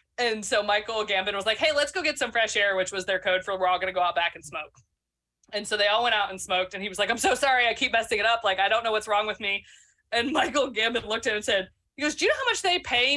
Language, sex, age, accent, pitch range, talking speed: English, female, 20-39, American, 190-280 Hz, 330 wpm